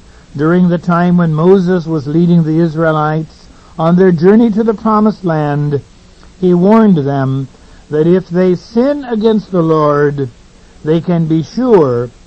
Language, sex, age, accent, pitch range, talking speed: English, male, 60-79, American, 145-195 Hz, 145 wpm